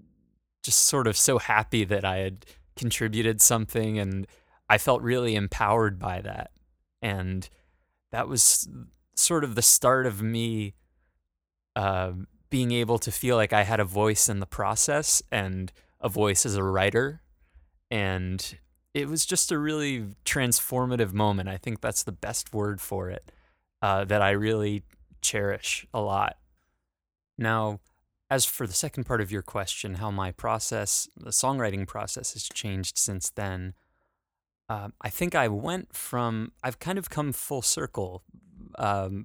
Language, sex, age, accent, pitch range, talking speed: English, male, 20-39, American, 95-120 Hz, 155 wpm